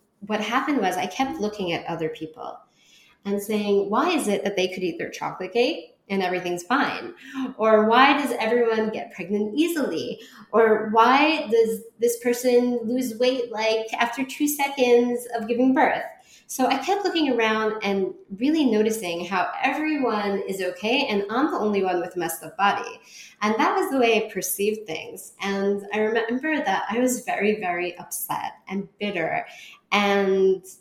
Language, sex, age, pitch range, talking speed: English, female, 20-39, 190-250 Hz, 170 wpm